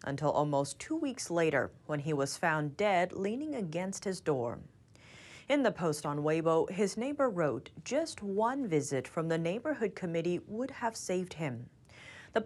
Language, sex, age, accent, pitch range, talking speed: English, female, 30-49, American, 150-225 Hz, 165 wpm